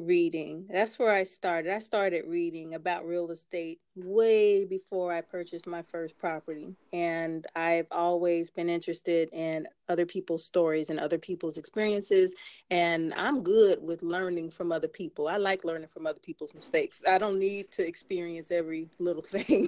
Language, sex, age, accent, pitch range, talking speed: English, female, 30-49, American, 165-195 Hz, 165 wpm